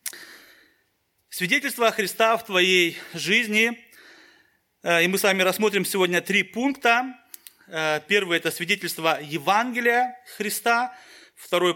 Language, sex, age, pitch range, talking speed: Russian, male, 30-49, 170-225 Hz, 100 wpm